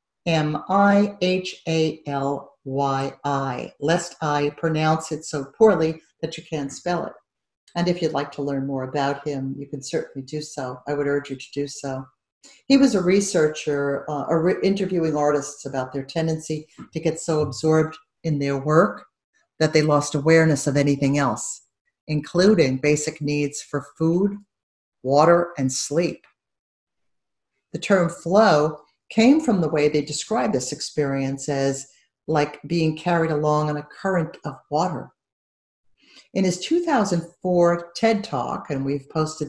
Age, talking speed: 50-69, 145 wpm